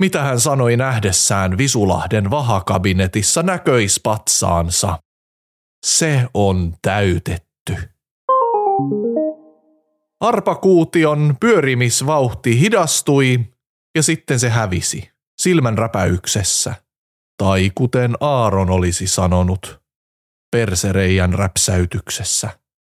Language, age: Finnish, 30-49